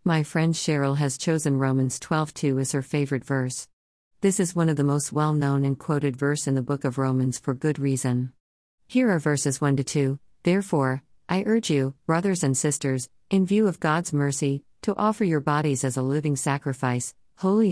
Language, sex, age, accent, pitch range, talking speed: English, female, 50-69, American, 135-165 Hz, 185 wpm